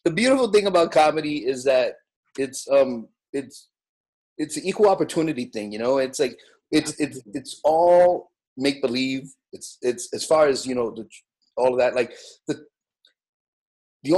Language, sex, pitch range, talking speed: English, male, 125-205 Hz, 165 wpm